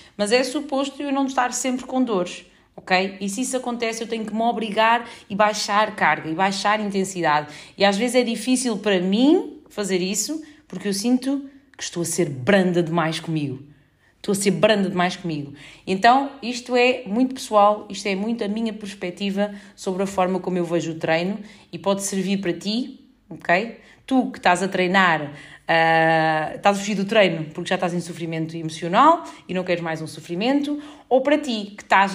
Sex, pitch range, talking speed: female, 185-240 Hz, 190 wpm